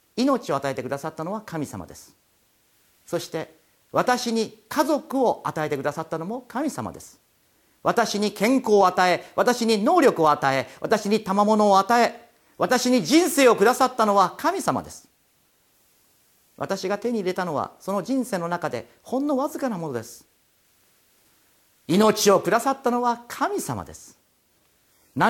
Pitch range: 160-245 Hz